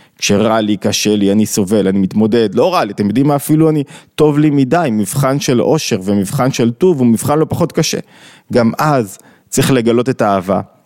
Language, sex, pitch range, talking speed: Hebrew, male, 115-150 Hz, 200 wpm